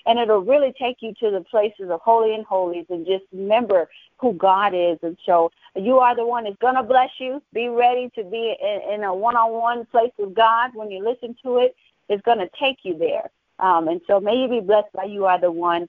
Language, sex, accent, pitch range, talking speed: English, female, American, 200-250 Hz, 240 wpm